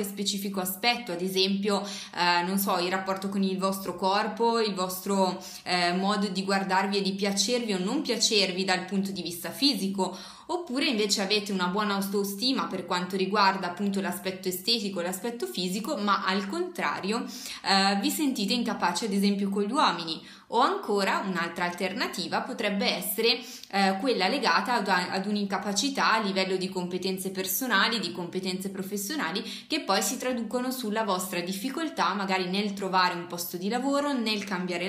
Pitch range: 190-235 Hz